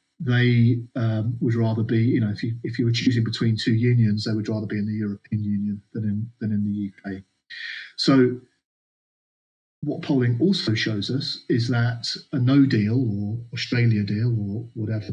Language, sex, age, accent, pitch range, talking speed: English, male, 40-59, British, 110-125 Hz, 185 wpm